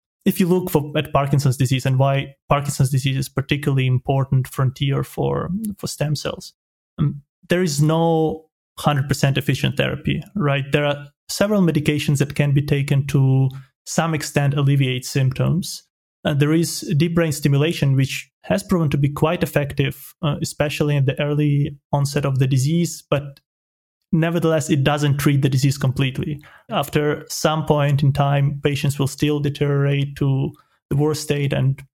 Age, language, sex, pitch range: 30-49, English, male, 140-155 Hz